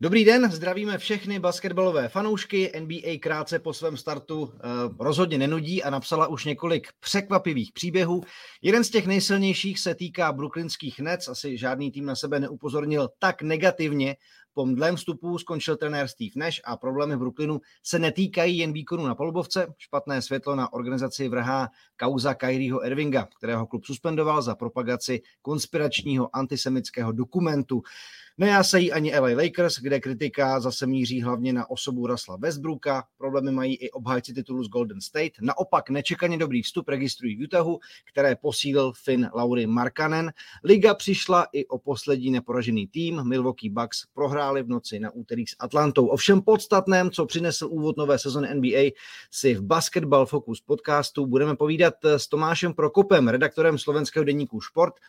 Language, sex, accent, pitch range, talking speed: Czech, male, native, 130-170 Hz, 150 wpm